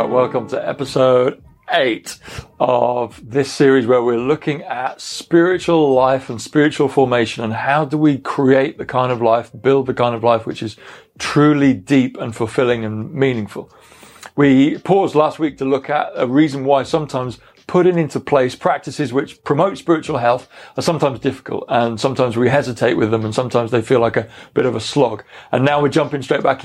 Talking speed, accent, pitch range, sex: 185 wpm, British, 125-155 Hz, male